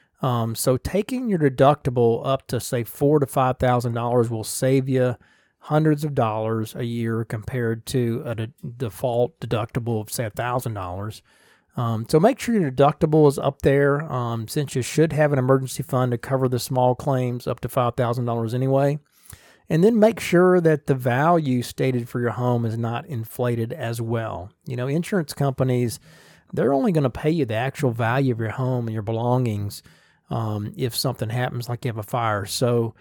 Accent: American